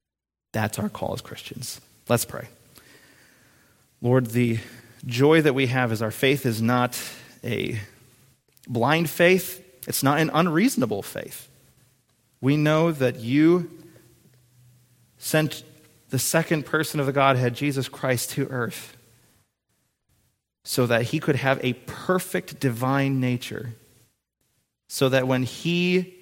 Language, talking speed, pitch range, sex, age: English, 125 wpm, 115-140 Hz, male, 30-49